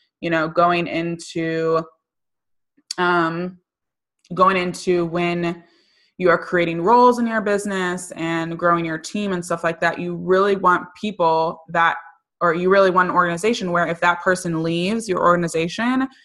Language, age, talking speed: English, 20-39, 150 wpm